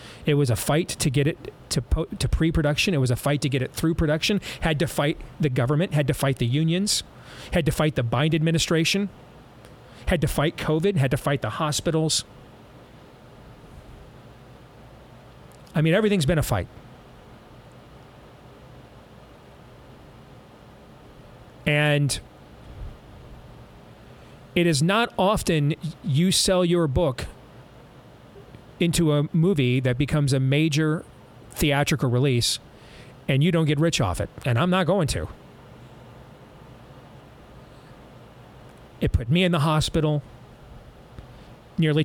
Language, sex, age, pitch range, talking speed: English, male, 40-59, 125-165 Hz, 125 wpm